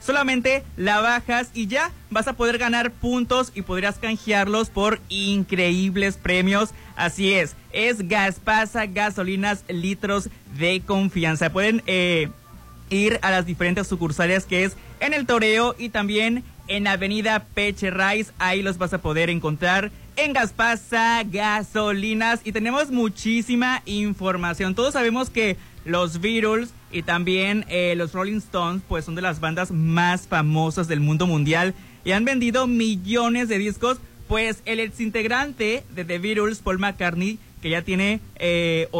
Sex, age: male, 20-39